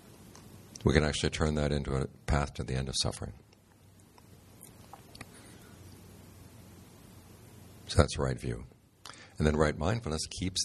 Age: 60-79